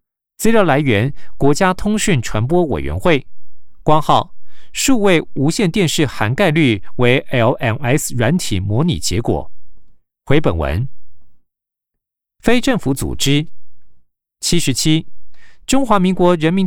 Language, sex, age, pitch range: Chinese, male, 50-69, 120-175 Hz